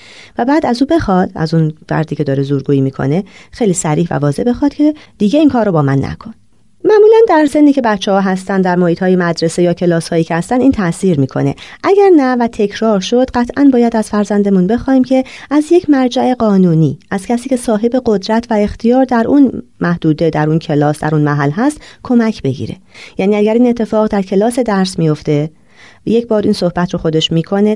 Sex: female